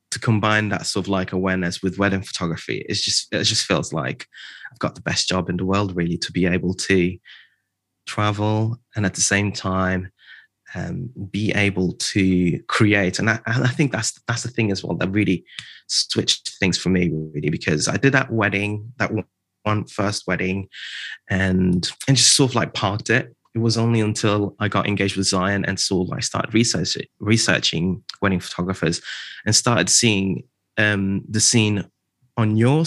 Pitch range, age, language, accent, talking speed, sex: 95-115 Hz, 20-39, English, British, 185 wpm, male